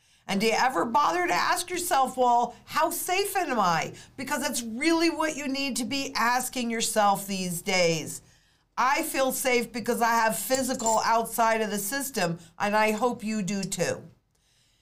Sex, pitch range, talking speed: female, 195-260 Hz, 170 wpm